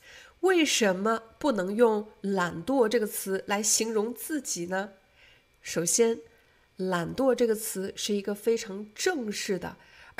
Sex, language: female, Chinese